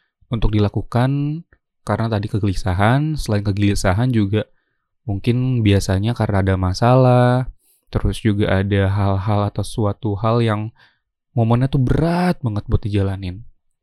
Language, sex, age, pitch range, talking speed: Indonesian, male, 20-39, 105-125 Hz, 115 wpm